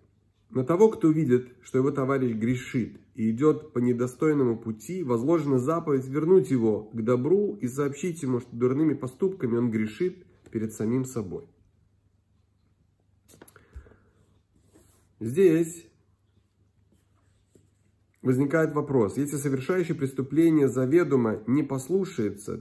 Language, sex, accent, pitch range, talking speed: Russian, male, native, 105-145 Hz, 105 wpm